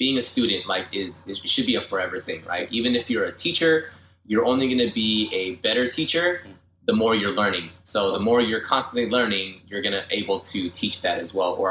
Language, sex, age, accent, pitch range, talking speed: English, male, 20-39, American, 90-120 Hz, 230 wpm